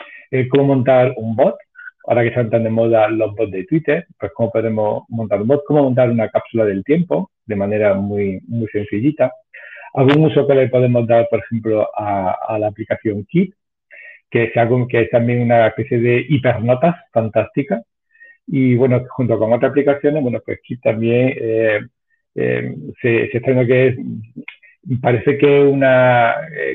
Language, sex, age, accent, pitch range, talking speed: Spanish, male, 50-69, Spanish, 115-145 Hz, 170 wpm